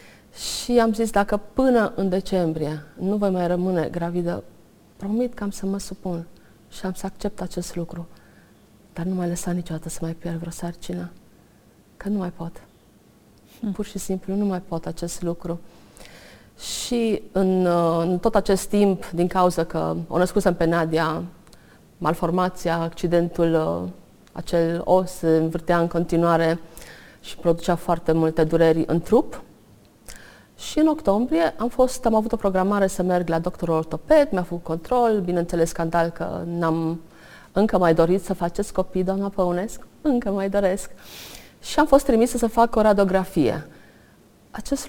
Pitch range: 170-200 Hz